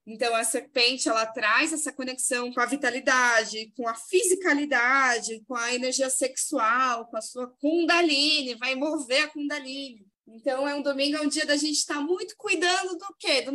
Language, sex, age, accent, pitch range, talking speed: Portuguese, female, 20-39, Brazilian, 245-305 Hz, 175 wpm